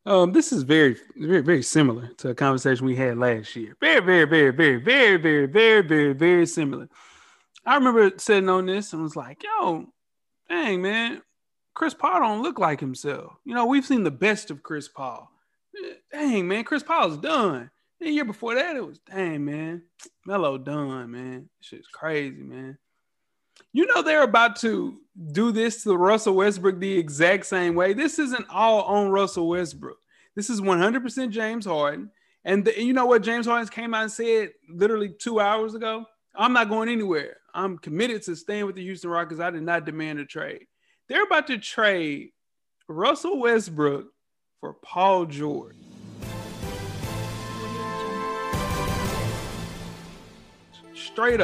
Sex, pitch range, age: male, 160-235 Hz, 30-49